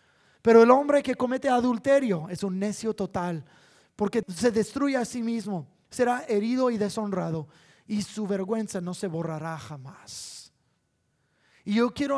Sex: male